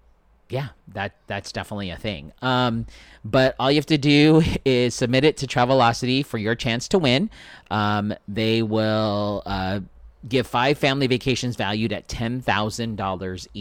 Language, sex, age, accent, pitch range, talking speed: English, male, 30-49, American, 100-130 Hz, 145 wpm